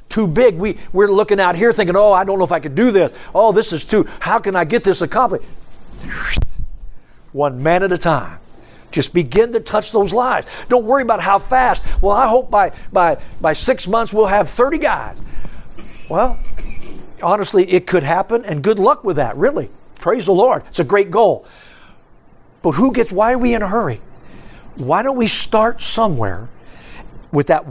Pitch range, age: 165-220 Hz, 60-79